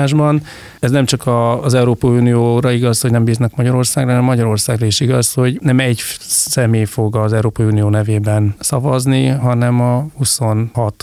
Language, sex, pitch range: Hungarian, male, 110-130 Hz